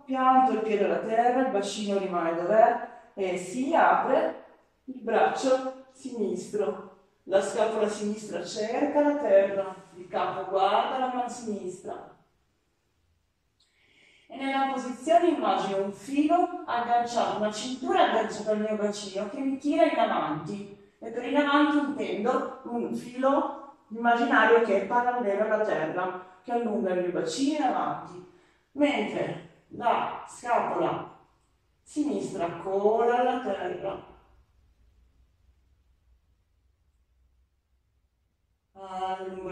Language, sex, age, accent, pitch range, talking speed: Italian, female, 40-59, native, 175-245 Hz, 110 wpm